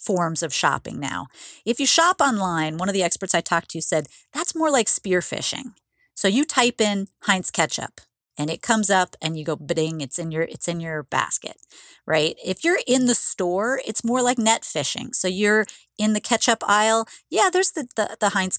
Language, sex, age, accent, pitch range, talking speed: English, female, 40-59, American, 170-230 Hz, 205 wpm